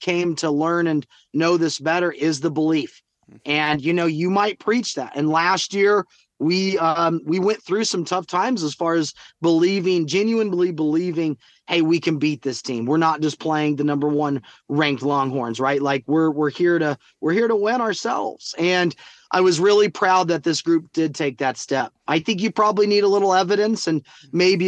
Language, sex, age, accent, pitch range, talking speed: English, male, 30-49, American, 155-180 Hz, 200 wpm